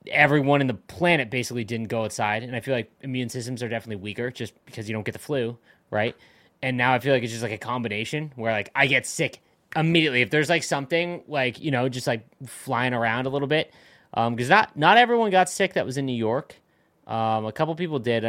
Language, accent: English, American